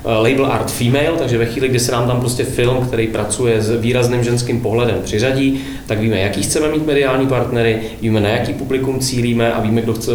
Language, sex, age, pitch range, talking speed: Czech, male, 30-49, 110-125 Hz, 205 wpm